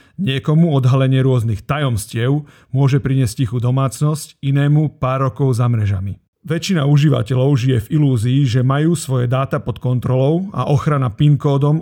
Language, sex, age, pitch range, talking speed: Slovak, male, 40-59, 125-145 Hz, 135 wpm